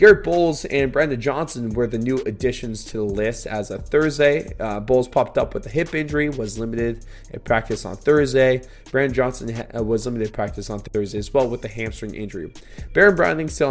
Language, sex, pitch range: English, male, 105-135 Hz